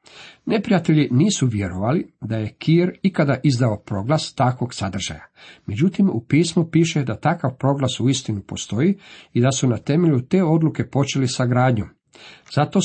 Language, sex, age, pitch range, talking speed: Croatian, male, 50-69, 115-145 Hz, 150 wpm